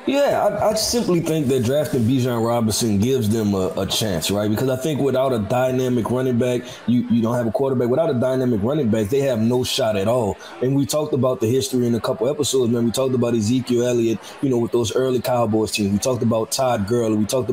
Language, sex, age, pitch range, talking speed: English, male, 20-39, 120-145 Hz, 245 wpm